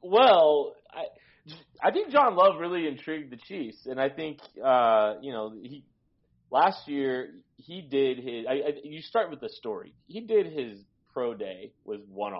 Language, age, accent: English, 30-49, American